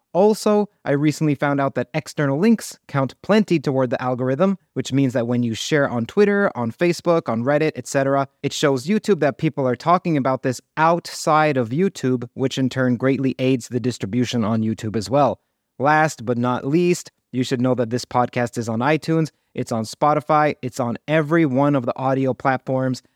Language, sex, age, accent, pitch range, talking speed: English, male, 30-49, American, 125-160 Hz, 190 wpm